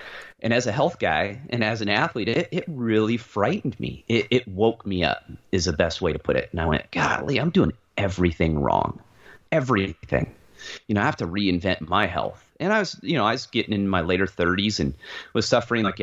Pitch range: 95-120 Hz